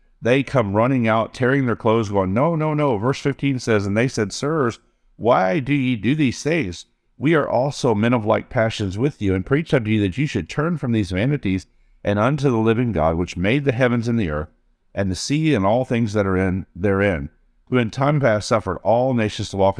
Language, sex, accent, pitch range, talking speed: English, male, American, 95-130 Hz, 225 wpm